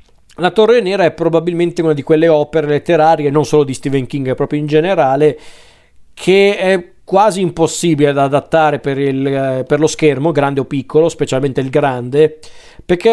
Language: Italian